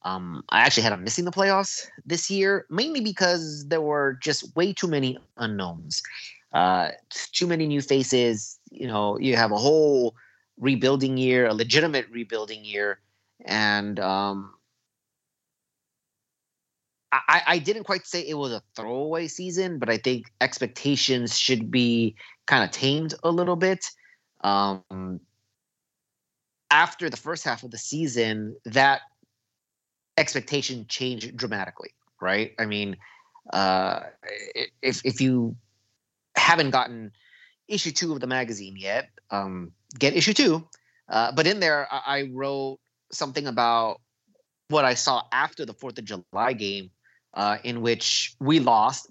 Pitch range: 110-150 Hz